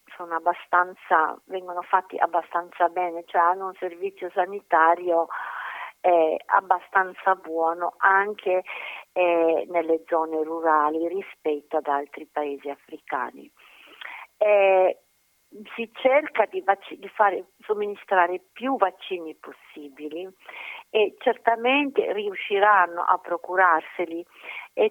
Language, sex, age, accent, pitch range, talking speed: Italian, female, 50-69, native, 170-210 Hz, 95 wpm